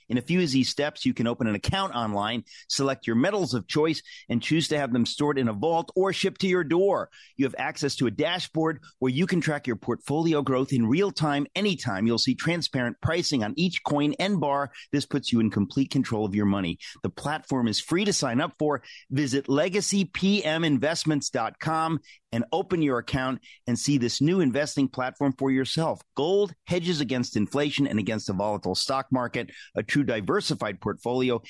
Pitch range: 125-160 Hz